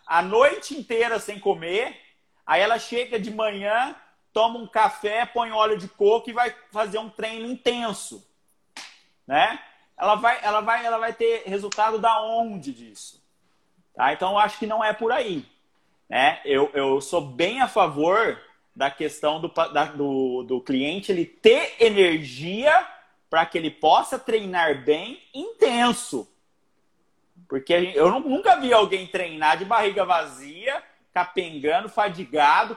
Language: Portuguese